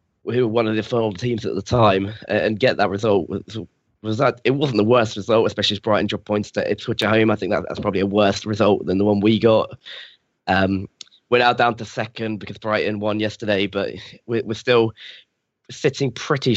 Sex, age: male, 10-29